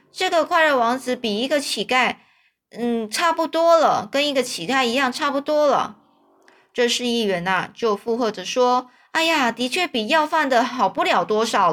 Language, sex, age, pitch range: Chinese, female, 20-39, 210-290 Hz